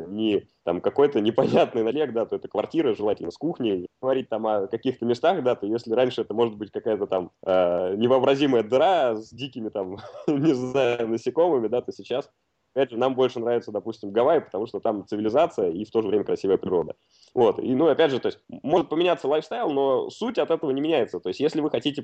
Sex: male